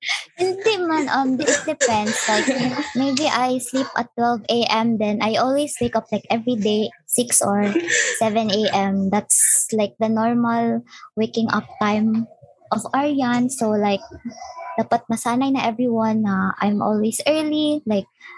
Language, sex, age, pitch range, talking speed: English, male, 20-39, 215-275 Hz, 135 wpm